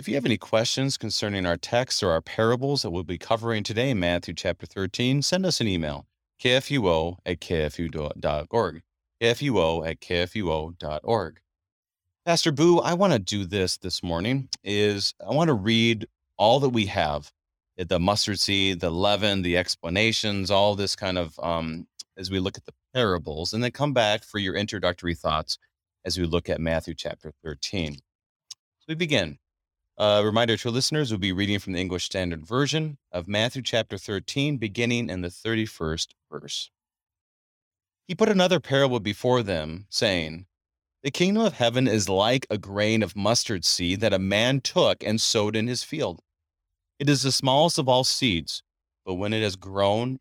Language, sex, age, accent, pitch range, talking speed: English, male, 30-49, American, 85-120 Hz, 175 wpm